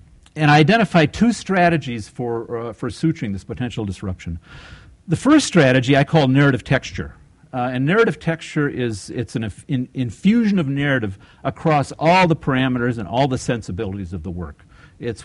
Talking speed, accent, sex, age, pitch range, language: 160 wpm, American, male, 50-69, 95-130 Hz, English